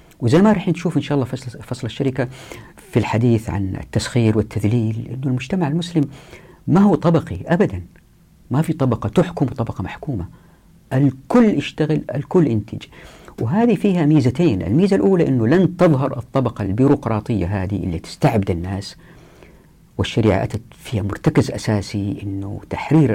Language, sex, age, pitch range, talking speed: Arabic, female, 50-69, 105-145 Hz, 135 wpm